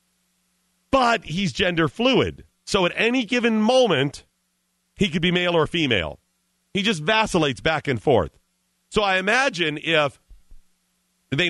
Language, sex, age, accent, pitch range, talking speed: English, male, 40-59, American, 135-195 Hz, 135 wpm